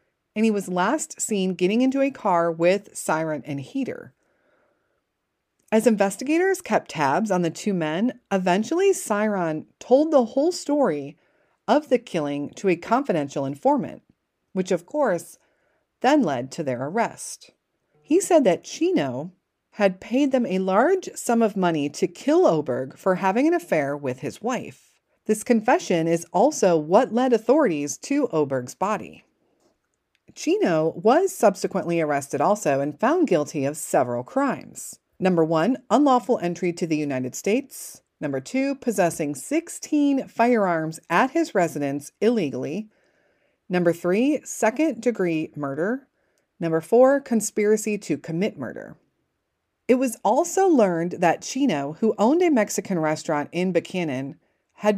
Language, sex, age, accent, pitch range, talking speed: English, female, 40-59, American, 165-265 Hz, 140 wpm